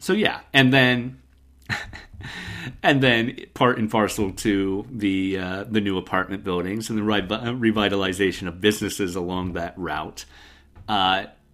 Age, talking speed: 40-59, 135 wpm